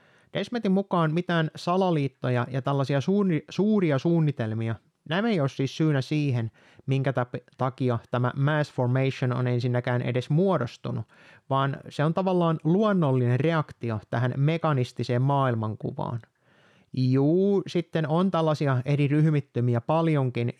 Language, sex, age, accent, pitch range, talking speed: Finnish, male, 30-49, native, 125-160 Hz, 120 wpm